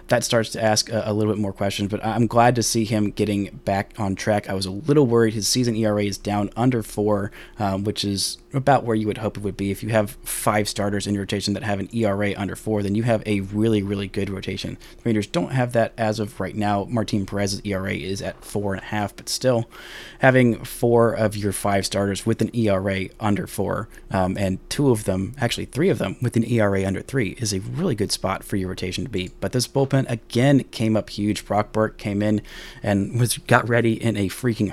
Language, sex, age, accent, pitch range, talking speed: English, male, 30-49, American, 100-115 Hz, 230 wpm